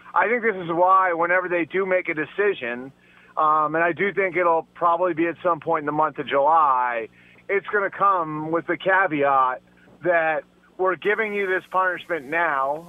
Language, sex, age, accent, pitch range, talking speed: English, male, 30-49, American, 155-185 Hz, 190 wpm